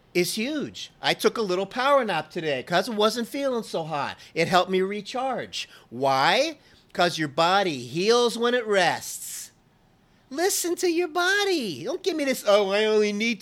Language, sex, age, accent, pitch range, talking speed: English, male, 40-59, American, 170-230 Hz, 175 wpm